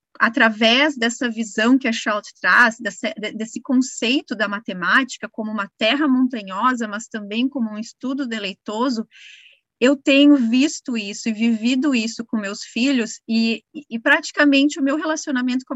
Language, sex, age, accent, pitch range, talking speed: Portuguese, female, 30-49, Brazilian, 220-275 Hz, 150 wpm